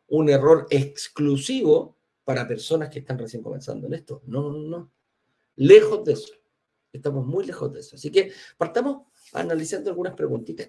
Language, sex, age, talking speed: Spanish, male, 50-69, 155 wpm